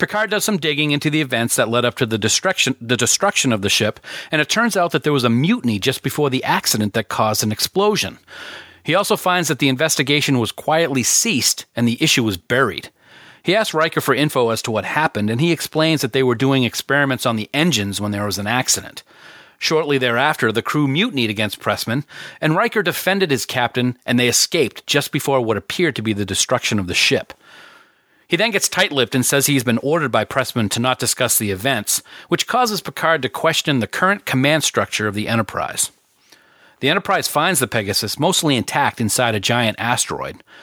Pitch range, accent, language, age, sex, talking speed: 115-155 Hz, American, English, 40-59, male, 200 wpm